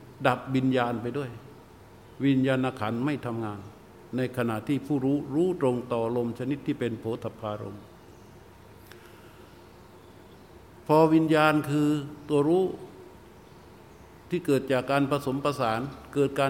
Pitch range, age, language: 115-140 Hz, 60-79, Thai